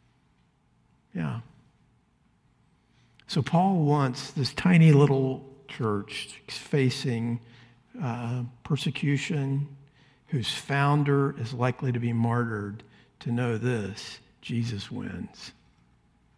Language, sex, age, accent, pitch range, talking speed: English, male, 50-69, American, 115-145 Hz, 85 wpm